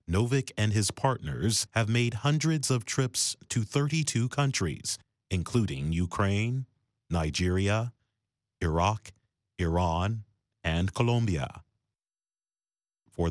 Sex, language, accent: male, English, American